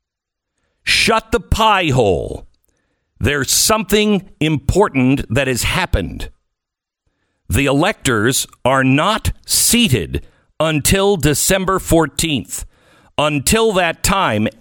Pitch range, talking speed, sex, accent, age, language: 95-145 Hz, 85 wpm, male, American, 60-79, English